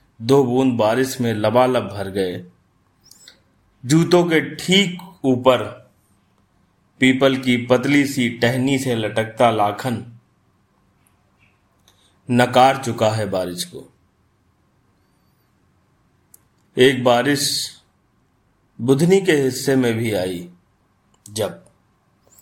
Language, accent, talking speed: Hindi, native, 90 wpm